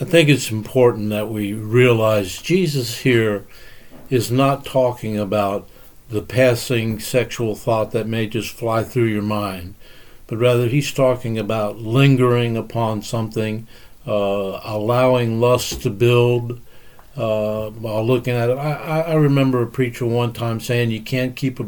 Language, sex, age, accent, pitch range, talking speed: English, male, 60-79, American, 110-125 Hz, 150 wpm